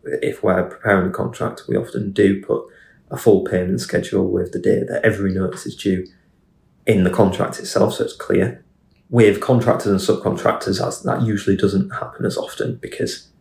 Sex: male